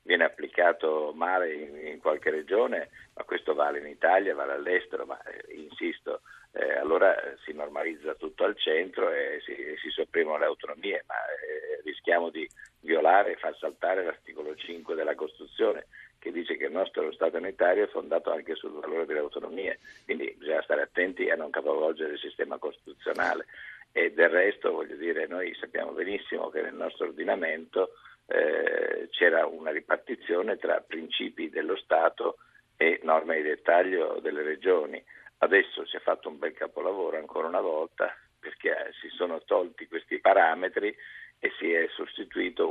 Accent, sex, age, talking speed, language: native, male, 50-69, 155 wpm, Italian